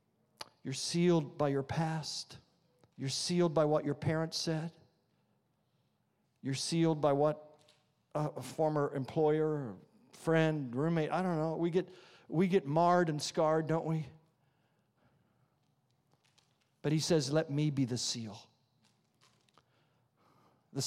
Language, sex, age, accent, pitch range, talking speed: English, male, 50-69, American, 120-155 Hz, 120 wpm